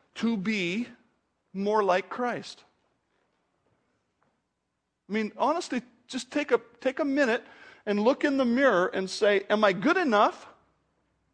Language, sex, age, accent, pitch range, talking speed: English, male, 50-69, American, 175-240 Hz, 125 wpm